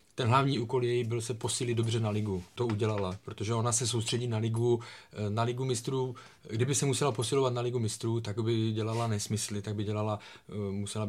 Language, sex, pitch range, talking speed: Czech, male, 105-120 Hz, 195 wpm